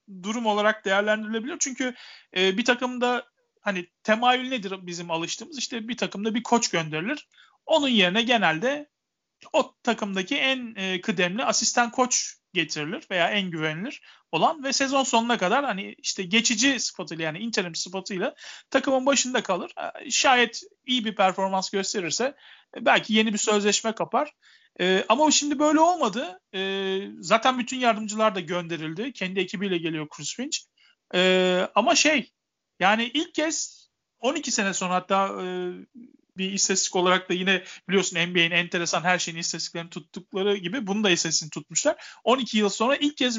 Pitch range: 190-255 Hz